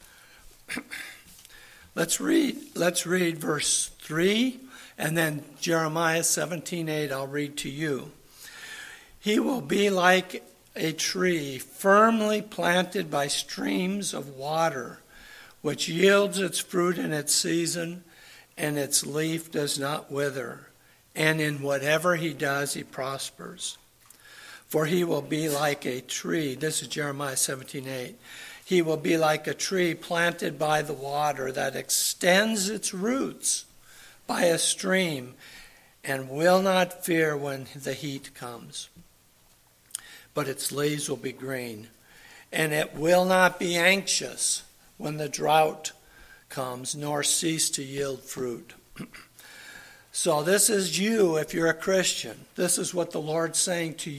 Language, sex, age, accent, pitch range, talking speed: English, male, 60-79, American, 145-180 Hz, 130 wpm